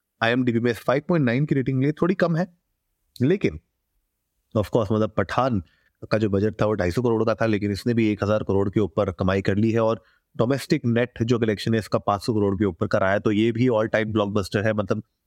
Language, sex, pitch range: Hindi, male, 100-125 Hz